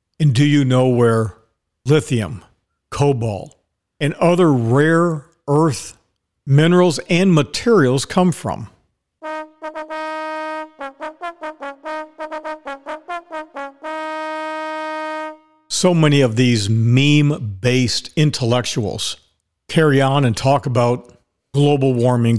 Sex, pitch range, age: male, 120-170 Hz, 50-69